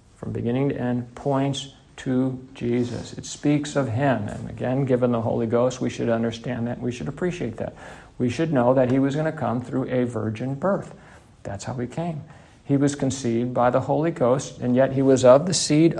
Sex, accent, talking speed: male, American, 210 wpm